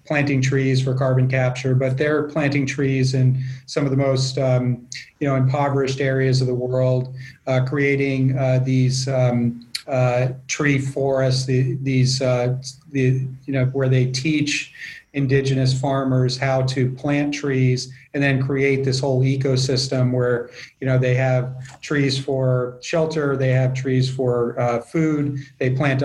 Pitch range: 125-135 Hz